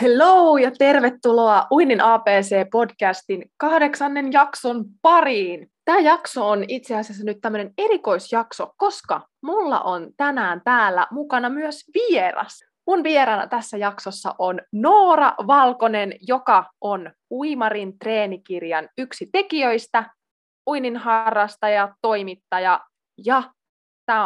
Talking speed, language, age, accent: 110 wpm, Finnish, 20-39, native